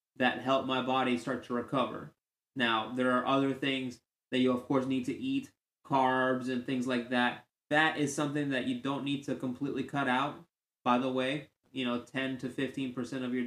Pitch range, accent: 125-140 Hz, American